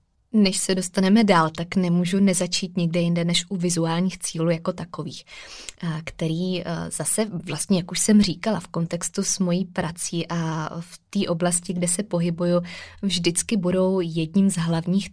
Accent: native